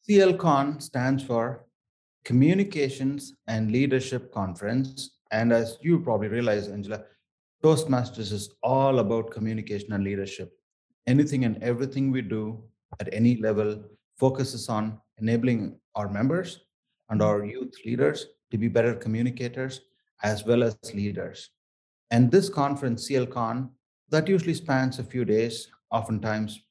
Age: 30-49